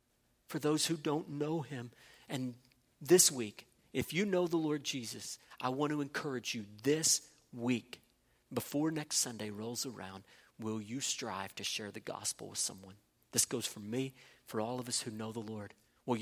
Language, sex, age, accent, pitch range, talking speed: English, male, 40-59, American, 120-155 Hz, 180 wpm